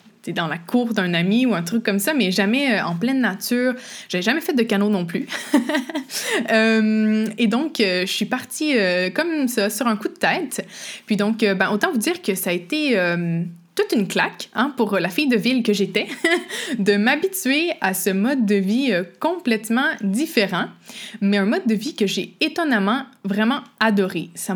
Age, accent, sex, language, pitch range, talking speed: 20-39, Canadian, female, French, 190-250 Hz, 205 wpm